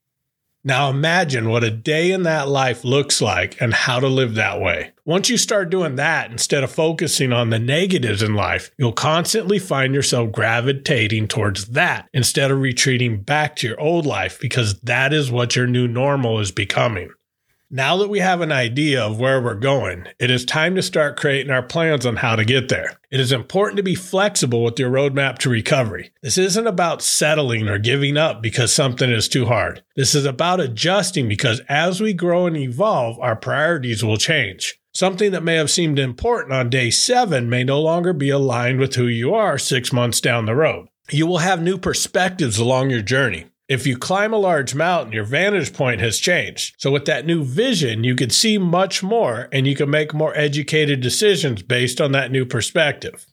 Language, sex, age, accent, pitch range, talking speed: English, male, 40-59, American, 125-165 Hz, 200 wpm